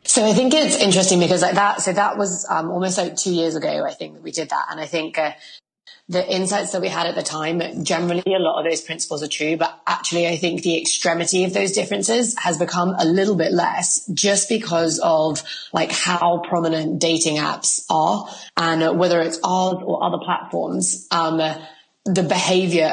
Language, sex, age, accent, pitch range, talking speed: English, female, 20-39, British, 155-185 Hz, 205 wpm